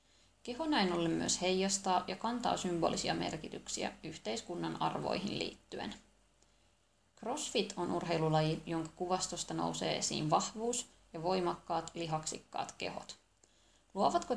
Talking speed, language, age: 105 wpm, Finnish, 20-39